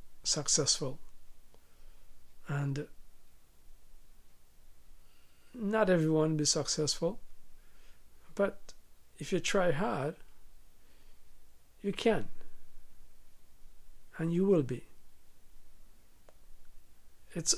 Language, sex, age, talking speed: English, male, 50-69, 60 wpm